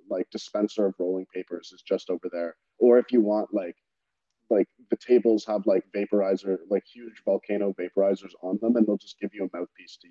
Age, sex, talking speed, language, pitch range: 20-39, male, 200 wpm, English, 95-110 Hz